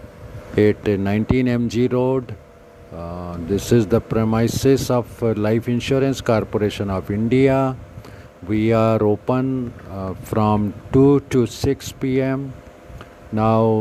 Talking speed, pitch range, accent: 115 wpm, 100-135 Hz, native